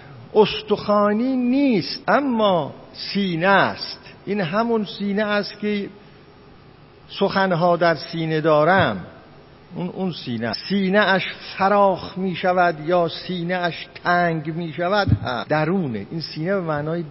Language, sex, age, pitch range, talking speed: Persian, male, 50-69, 155-210 Hz, 115 wpm